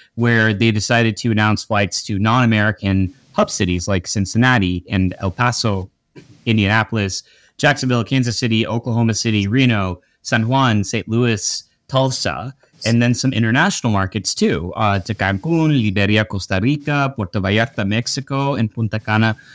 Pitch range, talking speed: 105-130 Hz, 140 wpm